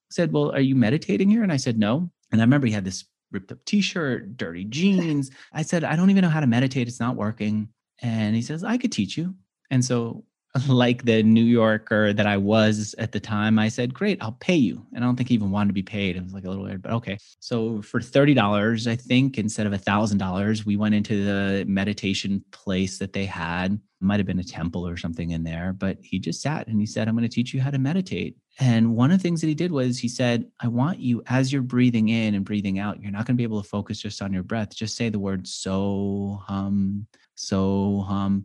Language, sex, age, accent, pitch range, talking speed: English, male, 30-49, American, 100-125 Hz, 245 wpm